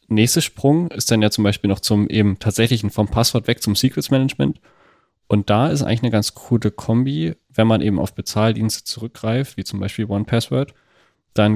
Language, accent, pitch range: German, German, 100-115 Hz